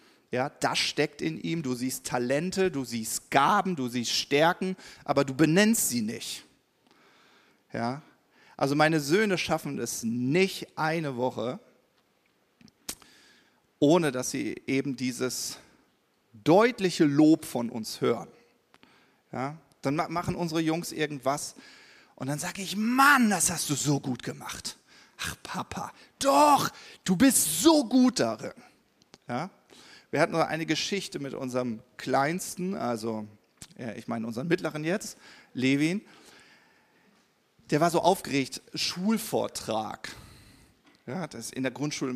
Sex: male